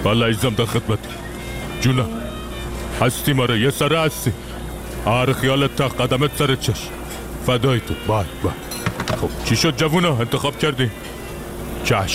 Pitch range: 115-150 Hz